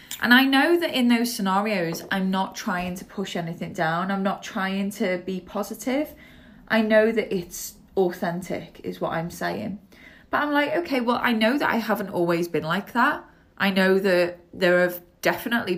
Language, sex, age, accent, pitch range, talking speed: English, female, 20-39, British, 175-220 Hz, 185 wpm